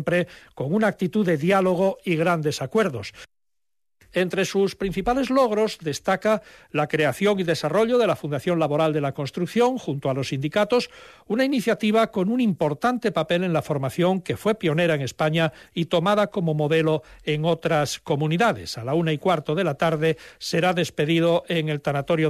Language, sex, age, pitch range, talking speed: Spanish, male, 60-79, 155-195 Hz, 165 wpm